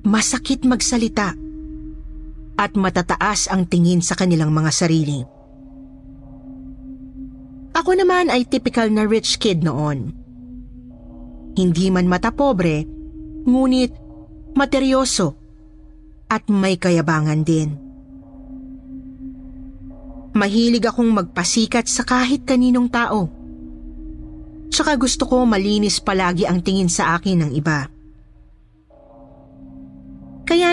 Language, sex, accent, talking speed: Filipino, female, native, 90 wpm